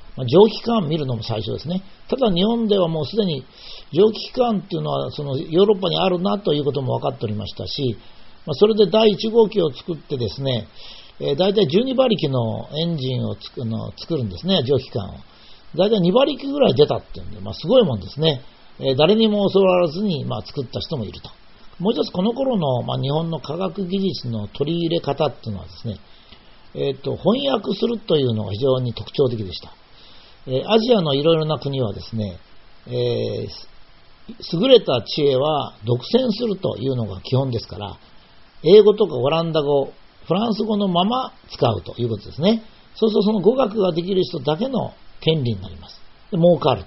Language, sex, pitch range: Japanese, male, 120-195 Hz